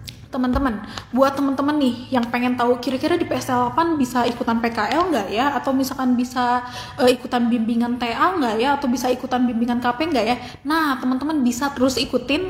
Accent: native